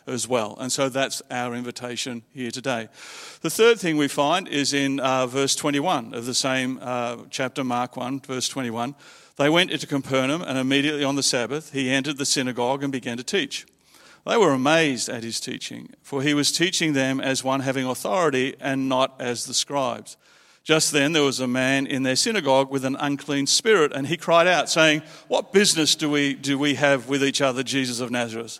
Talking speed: 200 wpm